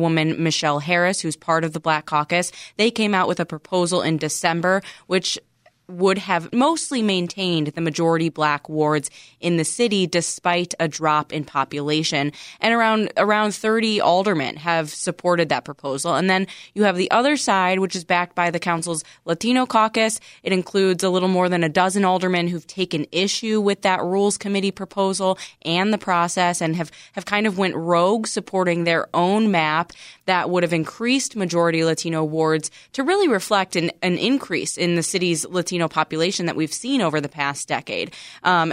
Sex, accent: female, American